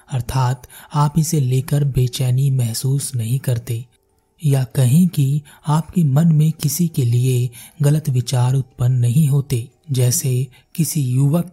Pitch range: 125-150 Hz